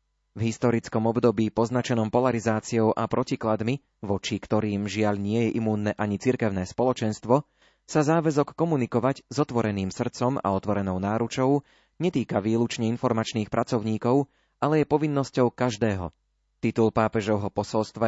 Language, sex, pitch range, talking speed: Slovak, male, 105-125 Hz, 120 wpm